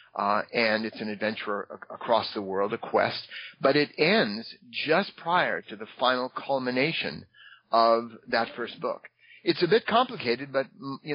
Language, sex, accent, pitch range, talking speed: English, male, American, 115-165 Hz, 155 wpm